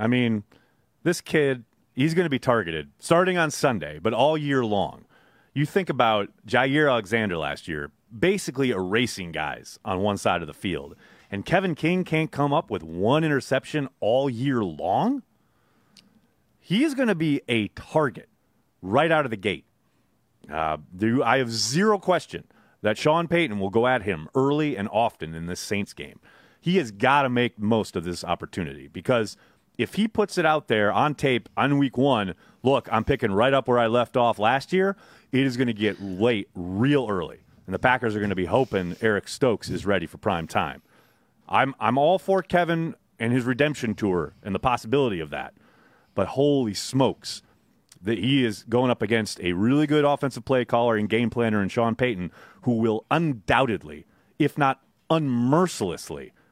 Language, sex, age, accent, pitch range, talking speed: English, male, 30-49, American, 105-145 Hz, 185 wpm